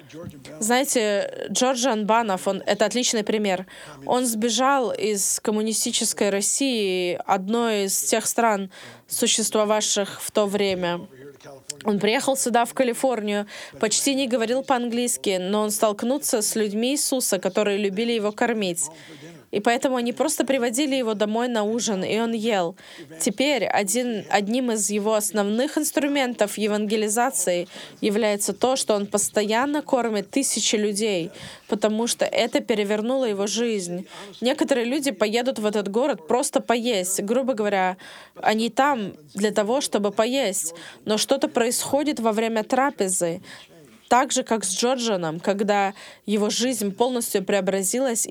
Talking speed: 130 wpm